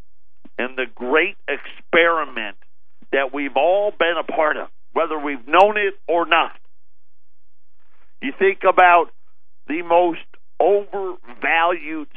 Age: 50-69